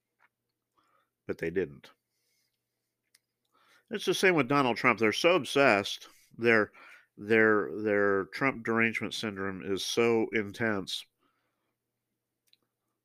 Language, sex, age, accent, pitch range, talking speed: English, male, 50-69, American, 95-115 Hz, 95 wpm